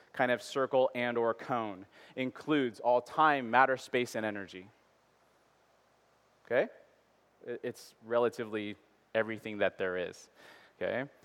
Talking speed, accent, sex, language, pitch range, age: 110 wpm, American, male, English, 125-155 Hz, 30-49